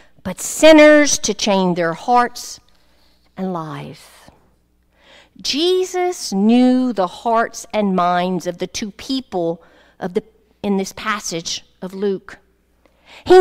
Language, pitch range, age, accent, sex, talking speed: English, 195-285 Hz, 50-69, American, female, 115 wpm